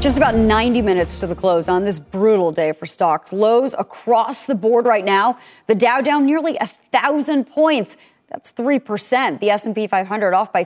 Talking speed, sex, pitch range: 180 wpm, female, 190-255 Hz